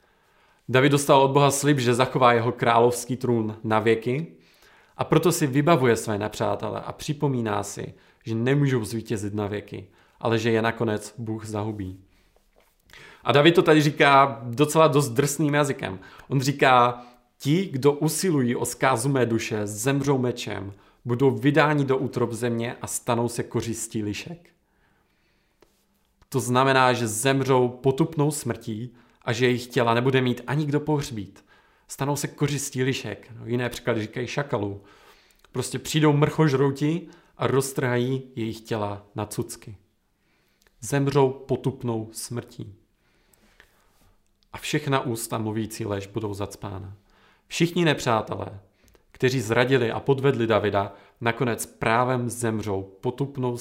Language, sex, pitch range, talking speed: Czech, male, 110-135 Hz, 130 wpm